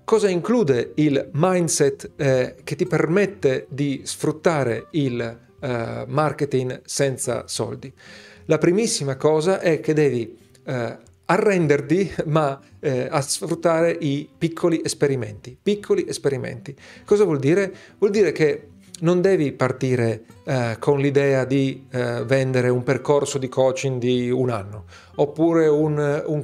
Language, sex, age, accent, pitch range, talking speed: Italian, male, 40-59, native, 130-170 Hz, 125 wpm